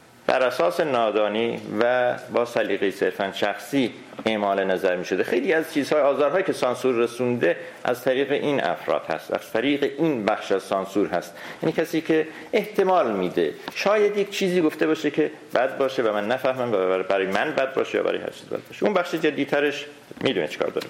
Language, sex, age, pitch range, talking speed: Persian, male, 50-69, 125-165 Hz, 185 wpm